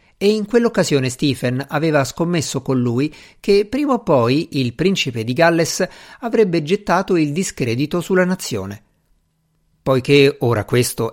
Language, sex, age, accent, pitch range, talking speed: Italian, male, 50-69, native, 120-170 Hz, 135 wpm